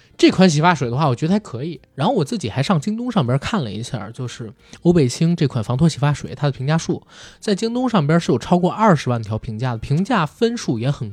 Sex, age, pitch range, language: male, 20-39, 125-180 Hz, Chinese